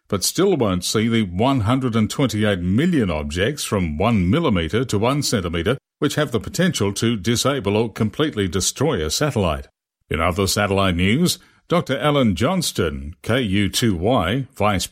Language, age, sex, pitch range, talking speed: English, 60-79, male, 95-125 Hz, 135 wpm